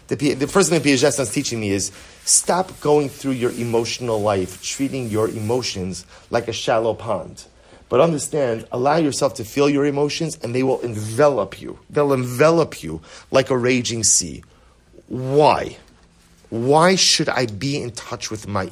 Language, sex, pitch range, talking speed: English, male, 105-145 Hz, 160 wpm